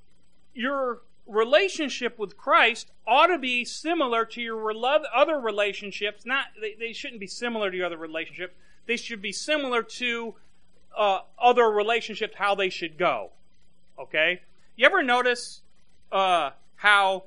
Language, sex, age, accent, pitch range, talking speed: English, male, 40-59, American, 190-255 Hz, 140 wpm